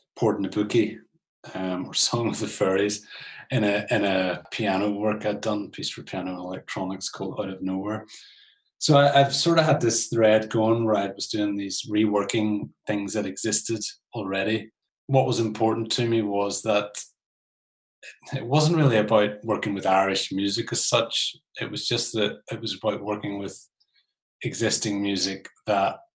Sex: male